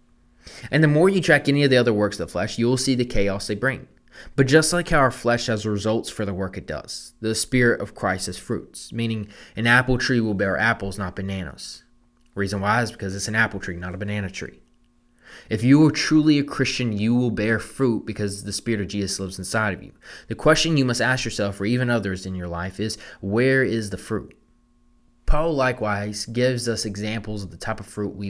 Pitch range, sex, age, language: 95-120 Hz, male, 20-39, English